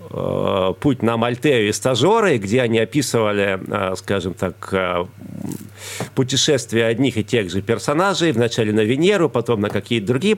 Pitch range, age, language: 105-130 Hz, 40-59, Russian